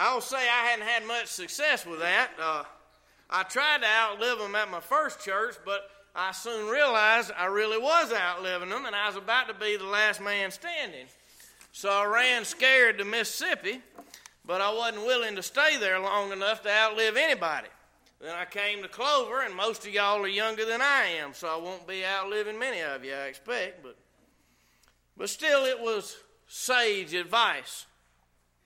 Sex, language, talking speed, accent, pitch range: male, English, 180 wpm, American, 175-235 Hz